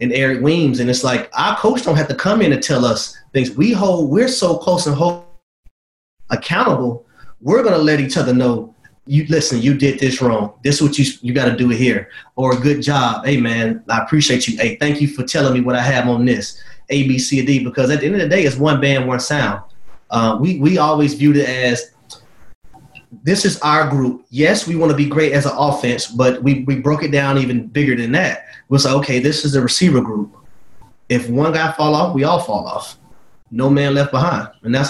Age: 30-49